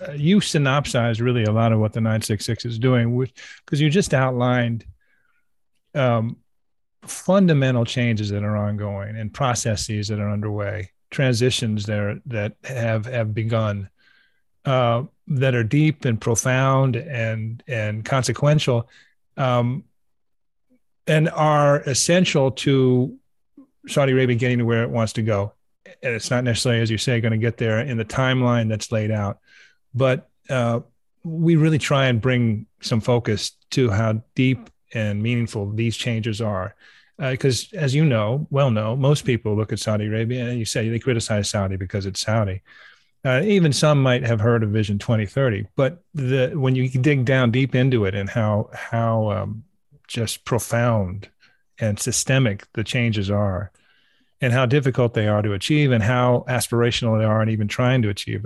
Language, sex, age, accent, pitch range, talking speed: English, male, 30-49, American, 110-130 Hz, 160 wpm